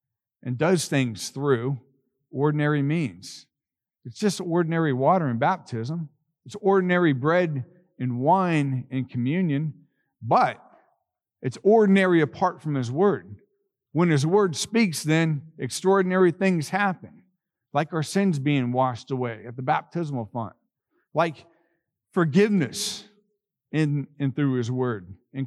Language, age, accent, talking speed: English, 50-69, American, 125 wpm